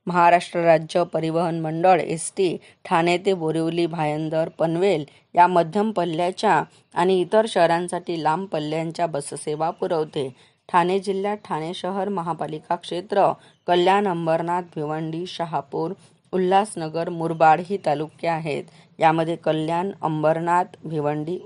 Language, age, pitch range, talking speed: Marathi, 20-39, 160-185 Hz, 110 wpm